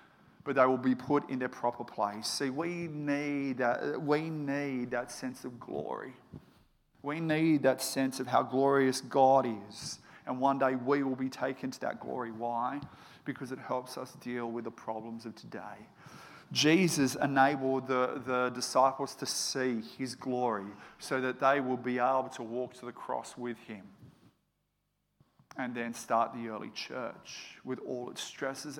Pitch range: 120-140 Hz